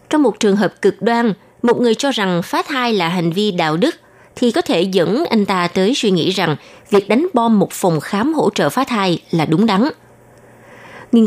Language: Vietnamese